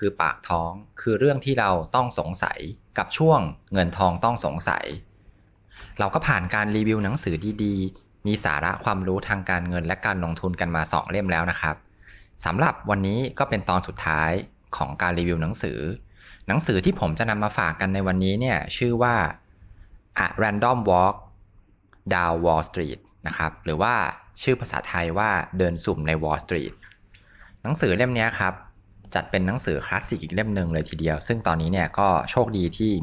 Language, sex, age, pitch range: Thai, male, 20-39, 85-105 Hz